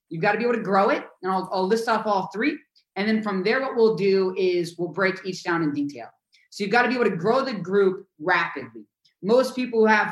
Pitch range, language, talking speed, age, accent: 145-200 Hz, English, 260 wpm, 20-39, American